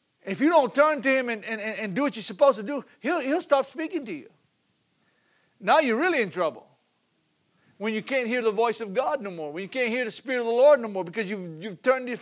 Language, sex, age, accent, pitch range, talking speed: English, male, 50-69, American, 180-245 Hz, 255 wpm